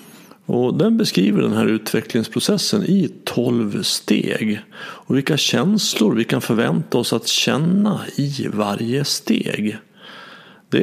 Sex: male